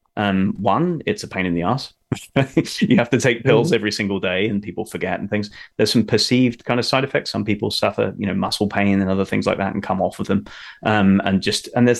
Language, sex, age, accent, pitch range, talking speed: English, male, 20-39, British, 95-110 Hz, 245 wpm